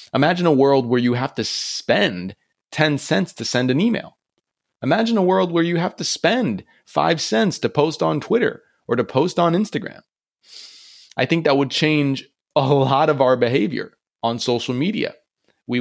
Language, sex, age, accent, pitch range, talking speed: English, male, 20-39, American, 115-160 Hz, 180 wpm